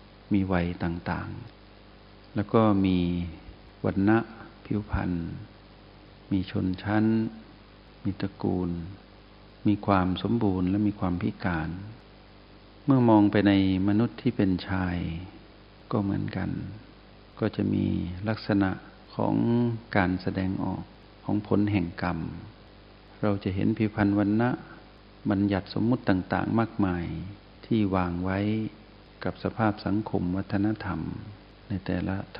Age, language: 60-79, Thai